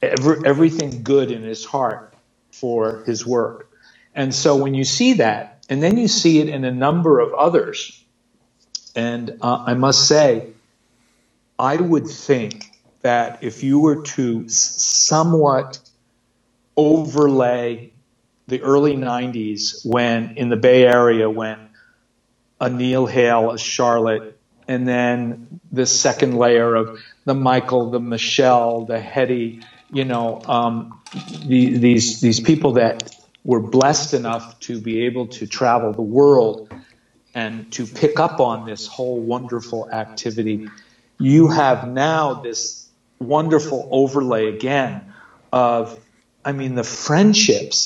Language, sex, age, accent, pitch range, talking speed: English, male, 50-69, American, 115-140 Hz, 130 wpm